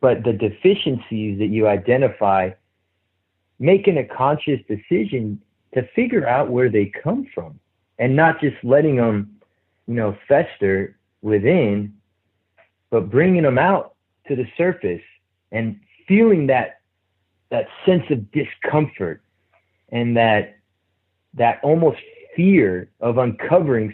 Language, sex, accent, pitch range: English, male, American, 100-140 Hz